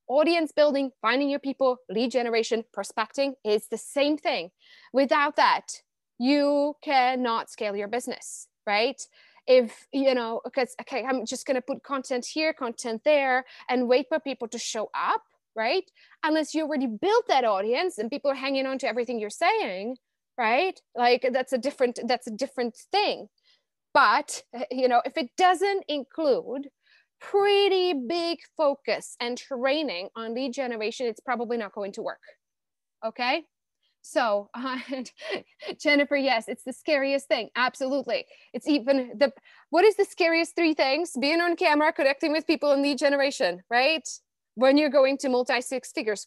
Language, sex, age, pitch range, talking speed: English, female, 20-39, 245-300 Hz, 160 wpm